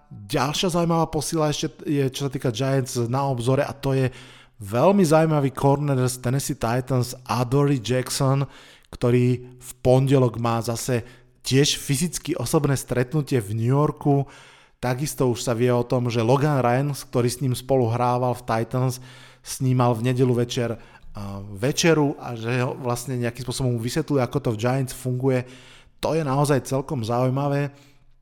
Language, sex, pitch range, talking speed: Slovak, male, 120-135 Hz, 150 wpm